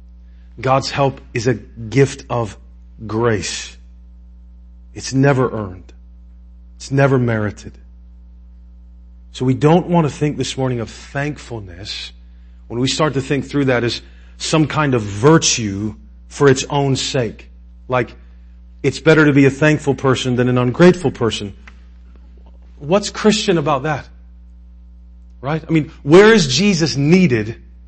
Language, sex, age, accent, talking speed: English, male, 40-59, American, 135 wpm